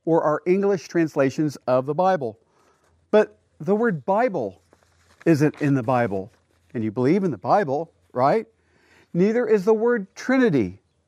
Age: 50-69